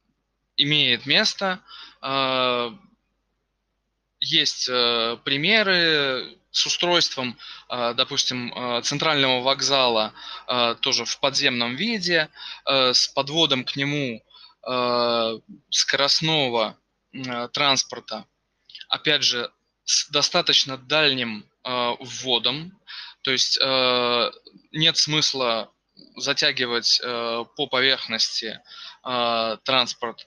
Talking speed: 70 wpm